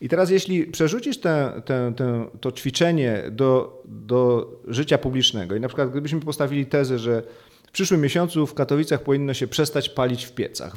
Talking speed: 155 wpm